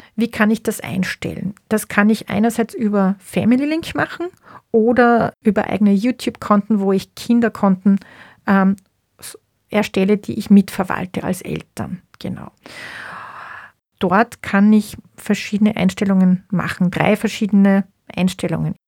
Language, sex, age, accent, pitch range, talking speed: German, female, 40-59, Austrian, 195-225 Hz, 120 wpm